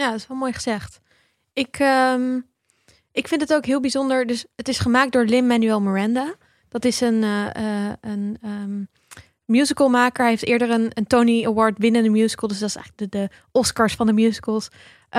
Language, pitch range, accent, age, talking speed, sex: Dutch, 215-250 Hz, Dutch, 10-29, 195 wpm, female